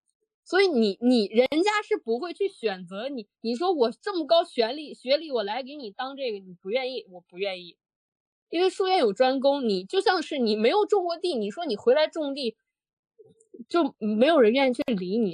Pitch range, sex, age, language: 215-310 Hz, female, 20-39, Chinese